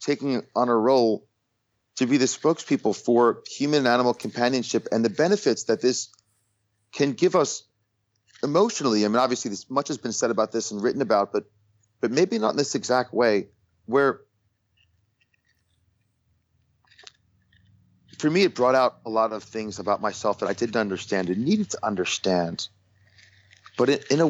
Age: 30-49